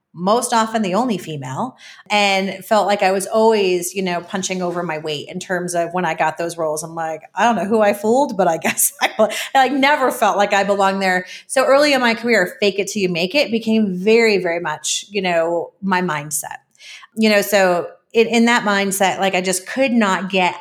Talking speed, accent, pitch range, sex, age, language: 220 wpm, American, 185-245 Hz, female, 30-49, English